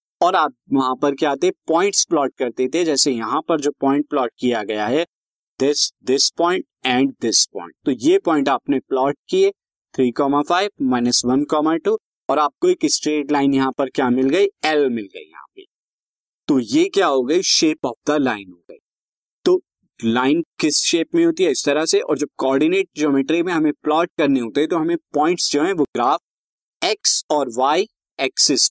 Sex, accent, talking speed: male, native, 190 wpm